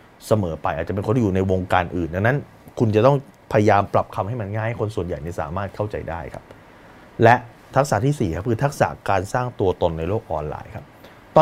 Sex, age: male, 20-39